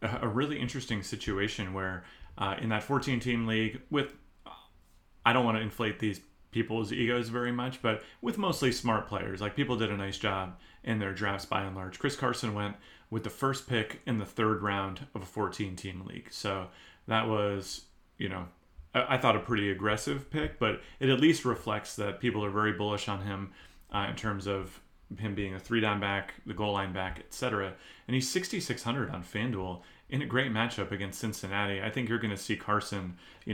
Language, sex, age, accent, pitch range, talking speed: English, male, 30-49, American, 95-120 Hz, 200 wpm